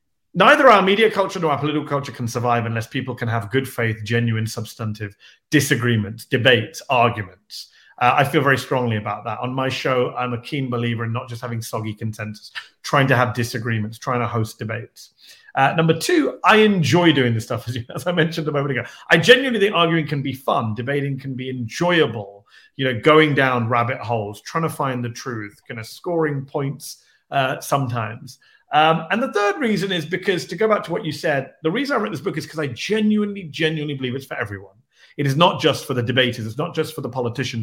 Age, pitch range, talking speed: 30-49, 120-160 Hz, 215 wpm